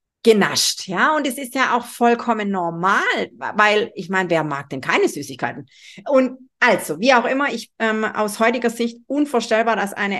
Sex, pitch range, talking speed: female, 200-250 Hz, 175 wpm